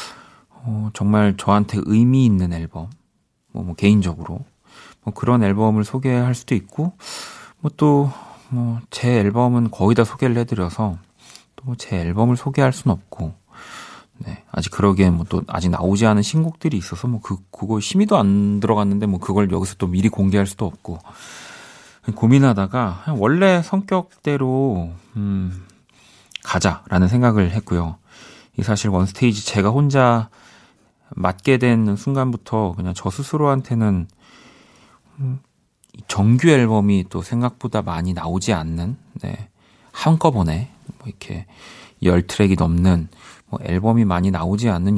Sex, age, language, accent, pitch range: male, 40-59, Korean, native, 95-125 Hz